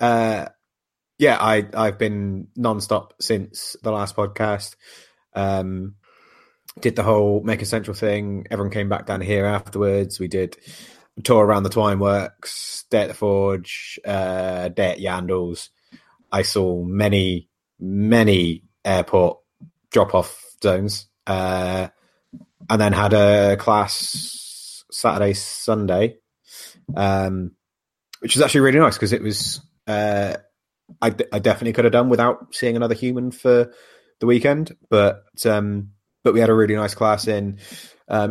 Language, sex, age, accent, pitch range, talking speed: English, male, 20-39, British, 95-110 Hz, 135 wpm